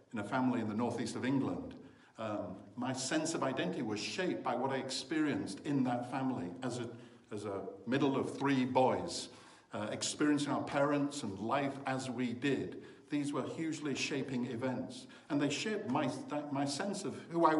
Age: 60-79